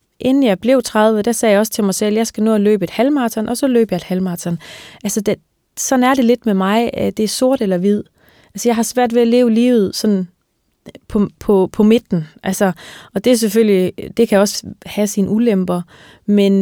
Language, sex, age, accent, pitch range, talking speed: Danish, female, 20-39, native, 185-220 Hz, 230 wpm